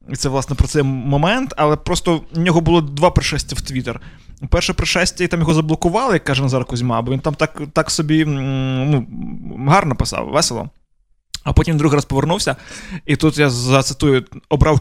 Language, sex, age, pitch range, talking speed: Ukrainian, male, 20-39, 130-160 Hz, 185 wpm